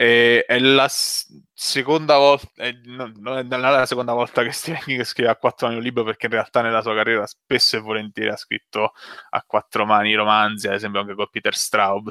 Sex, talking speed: male, 195 wpm